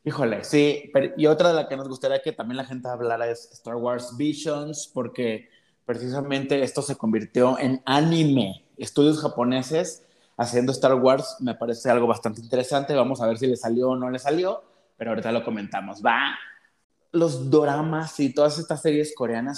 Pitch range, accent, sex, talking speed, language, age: 125-155 Hz, Mexican, male, 180 wpm, Spanish, 30-49